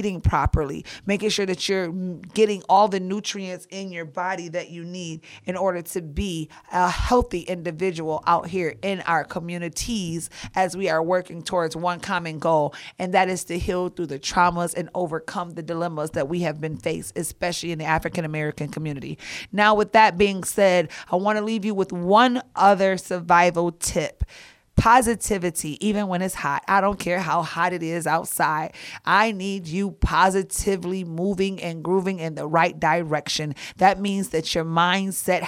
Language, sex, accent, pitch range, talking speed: English, female, American, 165-190 Hz, 170 wpm